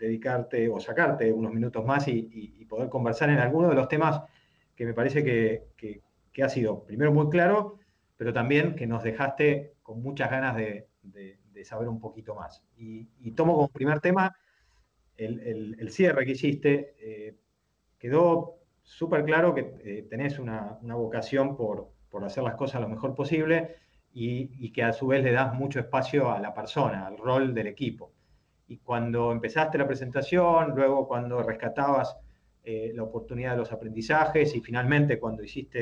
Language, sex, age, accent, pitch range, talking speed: Spanish, male, 30-49, Argentinian, 115-150 Hz, 175 wpm